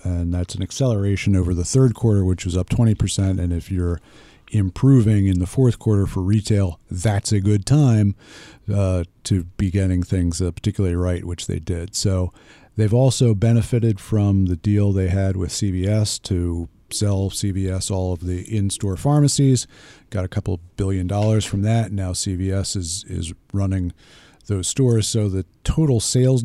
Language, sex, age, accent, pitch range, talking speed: English, male, 50-69, American, 95-115 Hz, 170 wpm